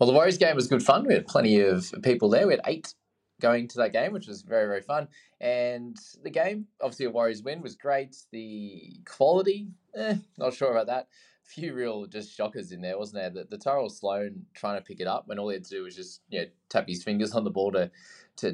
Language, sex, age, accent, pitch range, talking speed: English, male, 20-39, Australian, 100-165 Hz, 250 wpm